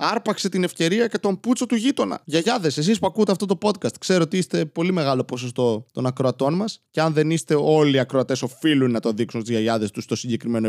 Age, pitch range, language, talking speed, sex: 20-39, 125-170 Hz, Greek, 220 wpm, male